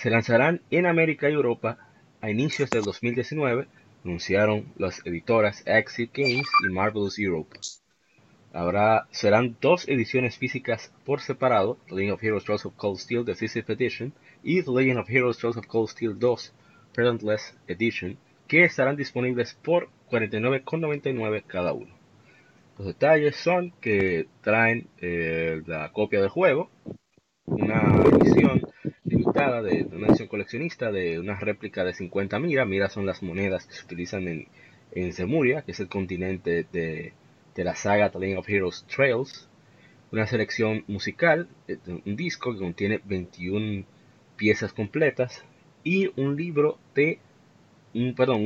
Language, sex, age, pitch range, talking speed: Spanish, male, 30-49, 100-130 Hz, 140 wpm